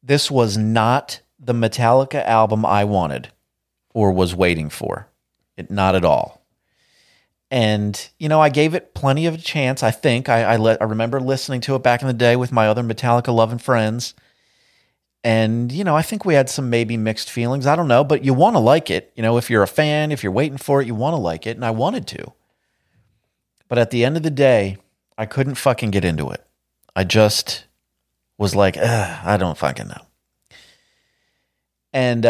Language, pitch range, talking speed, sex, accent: English, 90-130 Hz, 200 wpm, male, American